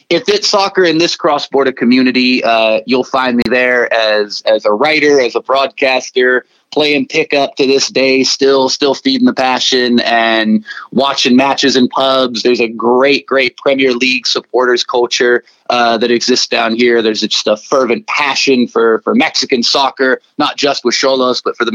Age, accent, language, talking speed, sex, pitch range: 30-49, American, English, 175 wpm, male, 120-145 Hz